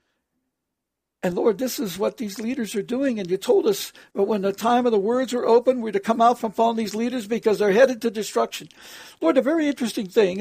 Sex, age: male, 60-79